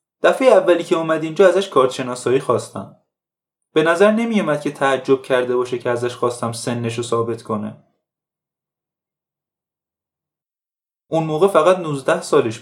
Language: Persian